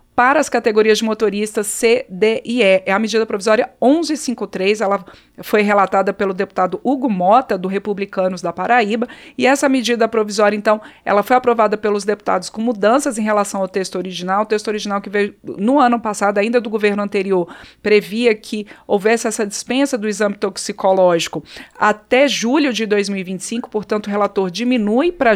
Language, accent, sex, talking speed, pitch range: Portuguese, Brazilian, female, 170 wpm, 195-235 Hz